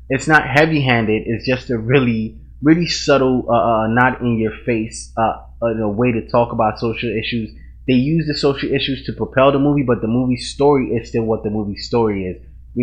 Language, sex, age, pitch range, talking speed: English, male, 20-39, 100-125 Hz, 195 wpm